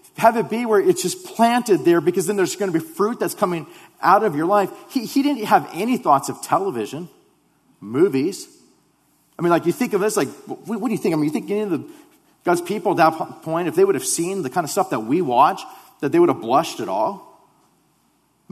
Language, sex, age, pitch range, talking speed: English, male, 40-59, 155-250 Hz, 240 wpm